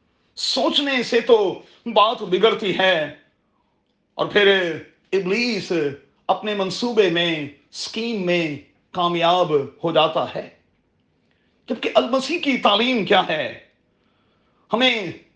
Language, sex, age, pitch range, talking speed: Urdu, male, 40-59, 175-235 Hz, 100 wpm